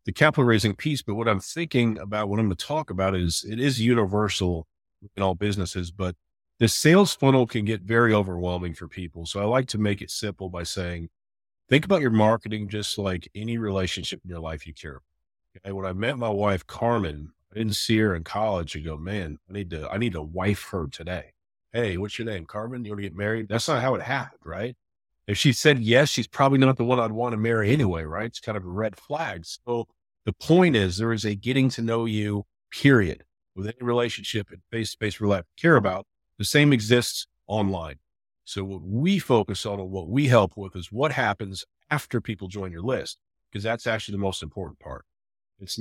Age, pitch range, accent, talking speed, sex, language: 40-59, 90-120 Hz, American, 220 wpm, male, English